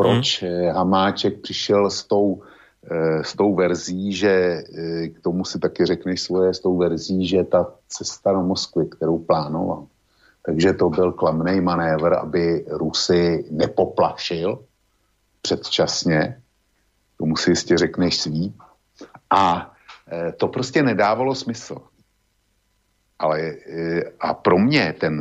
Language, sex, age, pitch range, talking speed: Slovak, male, 50-69, 85-100 Hz, 115 wpm